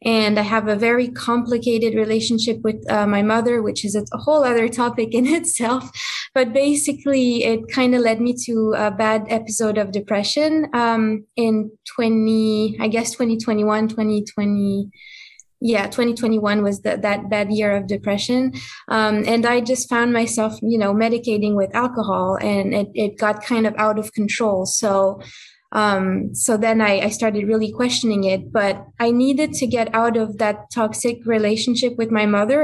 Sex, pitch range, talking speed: female, 215-240 Hz, 165 wpm